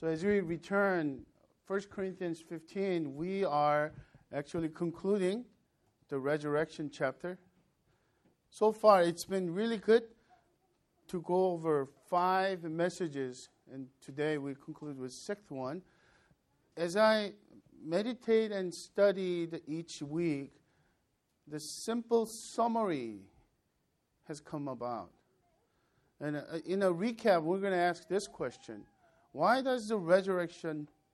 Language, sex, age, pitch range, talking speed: English, male, 50-69, 150-195 Hz, 115 wpm